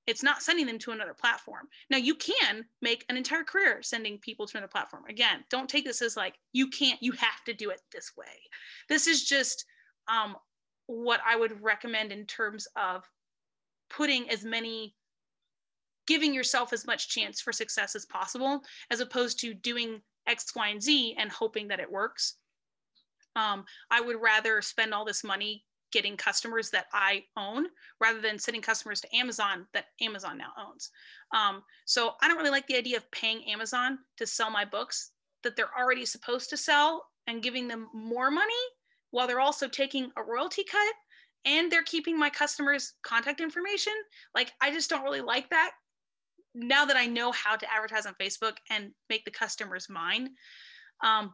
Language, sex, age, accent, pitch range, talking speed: English, female, 30-49, American, 220-290 Hz, 180 wpm